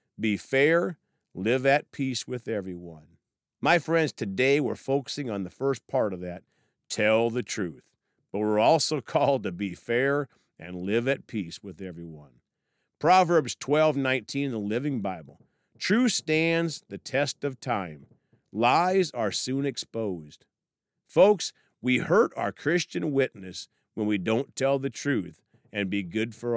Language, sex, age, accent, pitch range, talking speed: English, male, 50-69, American, 100-145 Hz, 145 wpm